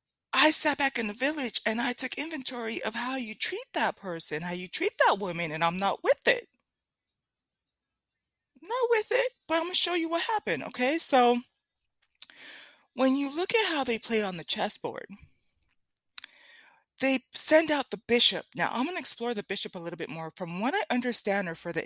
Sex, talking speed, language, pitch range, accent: female, 200 wpm, English, 195-285 Hz, American